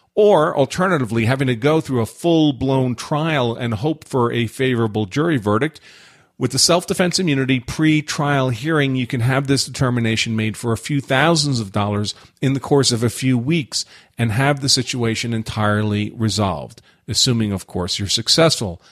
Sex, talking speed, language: male, 165 wpm, English